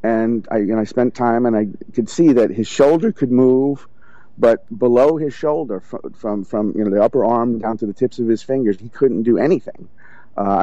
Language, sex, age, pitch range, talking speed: English, male, 50-69, 105-120 Hz, 230 wpm